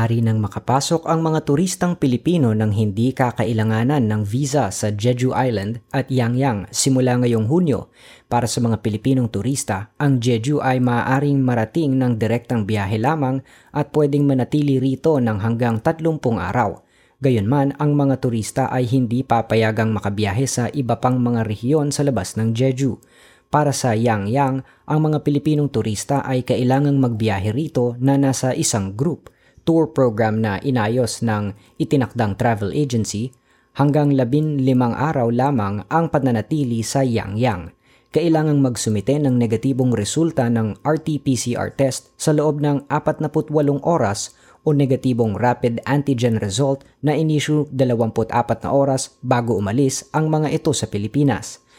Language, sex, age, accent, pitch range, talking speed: Filipino, female, 20-39, native, 115-145 Hz, 145 wpm